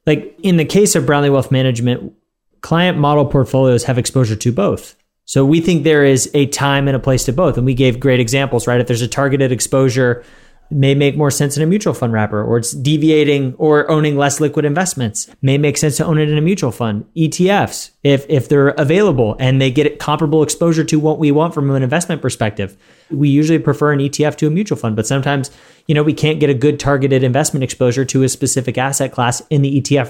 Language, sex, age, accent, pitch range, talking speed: English, male, 30-49, American, 130-155 Hz, 225 wpm